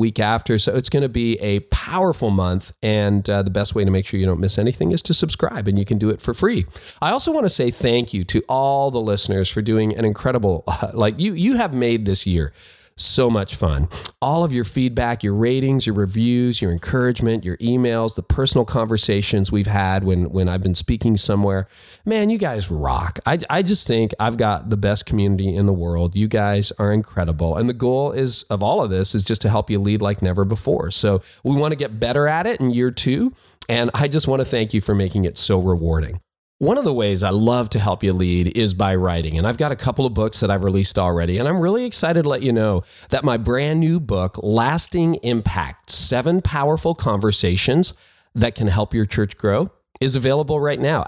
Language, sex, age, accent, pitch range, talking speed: English, male, 40-59, American, 100-130 Hz, 225 wpm